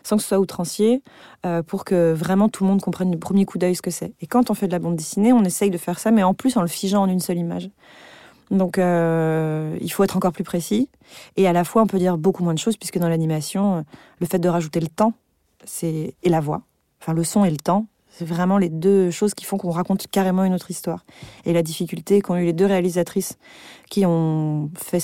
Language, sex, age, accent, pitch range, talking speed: French, female, 30-49, French, 170-200 Hz, 250 wpm